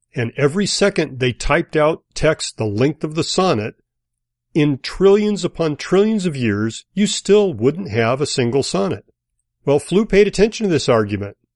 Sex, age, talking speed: male, 40-59, 165 wpm